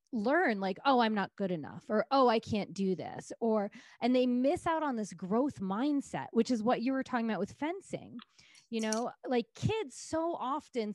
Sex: female